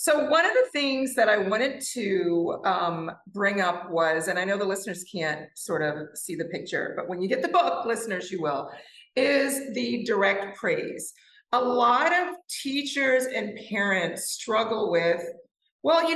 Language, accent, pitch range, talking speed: English, American, 190-270 Hz, 175 wpm